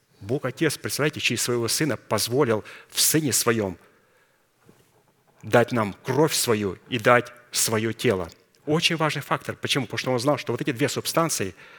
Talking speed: 160 wpm